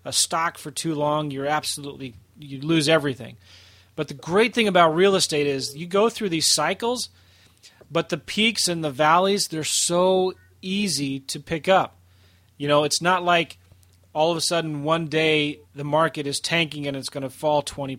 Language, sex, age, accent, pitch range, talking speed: English, male, 30-49, American, 135-175 Hz, 185 wpm